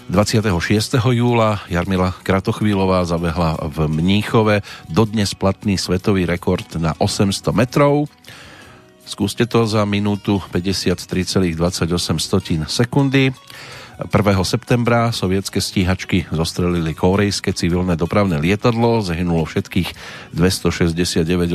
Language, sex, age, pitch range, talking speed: Slovak, male, 40-59, 90-105 Hz, 90 wpm